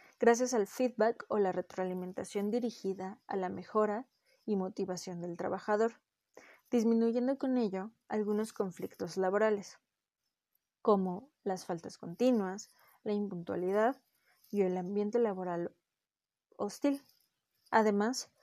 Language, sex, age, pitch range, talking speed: Spanish, female, 20-39, 195-245 Hz, 105 wpm